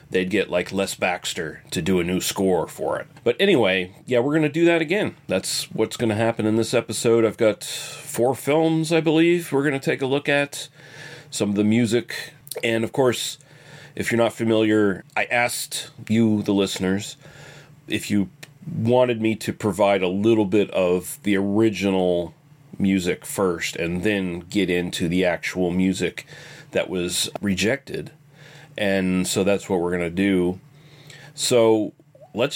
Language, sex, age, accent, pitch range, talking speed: English, male, 30-49, American, 100-140 Hz, 170 wpm